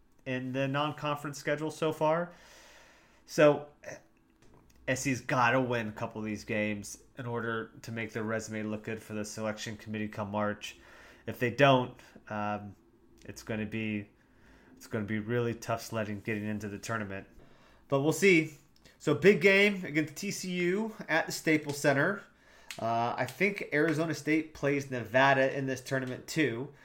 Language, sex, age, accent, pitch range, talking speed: English, male, 30-49, American, 110-145 Hz, 150 wpm